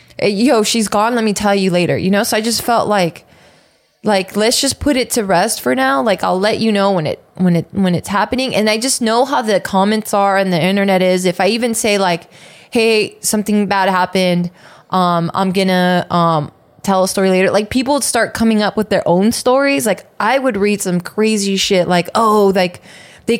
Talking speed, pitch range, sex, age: 220 wpm, 180-220 Hz, female, 20-39